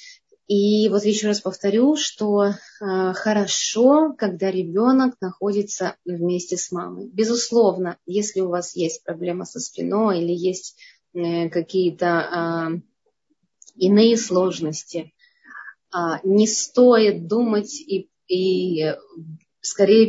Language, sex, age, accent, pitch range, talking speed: Russian, female, 20-39, native, 180-245 Hz, 110 wpm